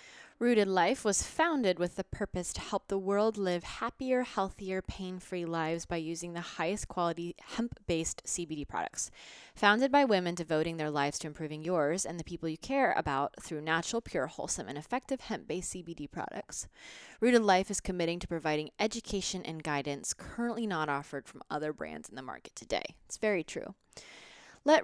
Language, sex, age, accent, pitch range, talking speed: English, female, 20-39, American, 170-230 Hz, 170 wpm